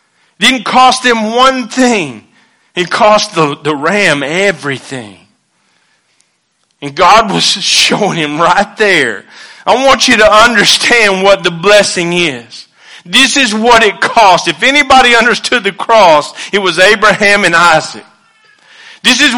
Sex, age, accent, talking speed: male, 40-59, American, 135 wpm